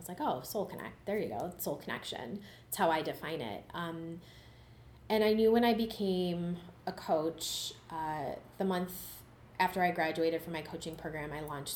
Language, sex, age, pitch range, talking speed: English, female, 20-39, 160-180 Hz, 185 wpm